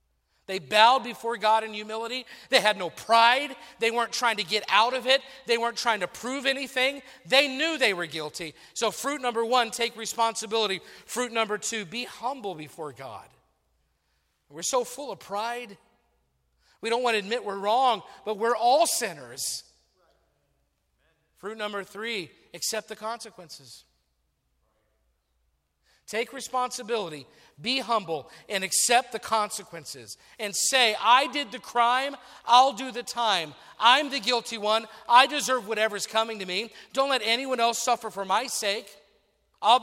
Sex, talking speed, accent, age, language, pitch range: male, 150 wpm, American, 40-59, English, 190-245 Hz